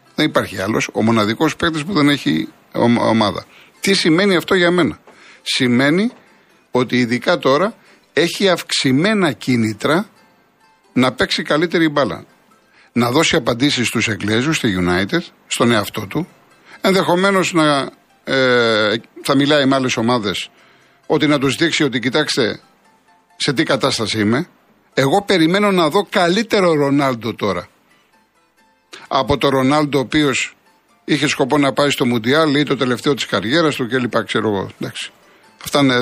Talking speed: 135 wpm